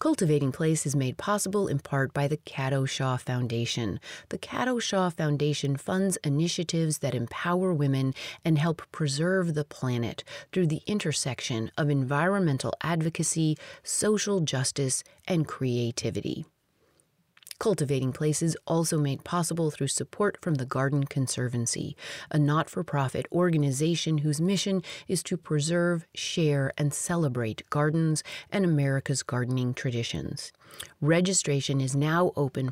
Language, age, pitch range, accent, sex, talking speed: English, 30-49, 135-170 Hz, American, female, 125 wpm